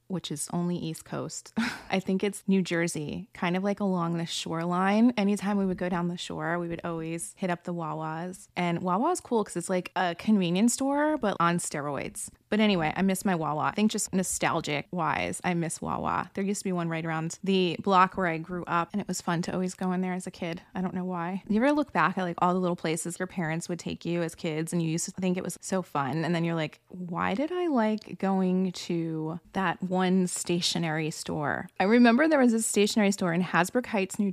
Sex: female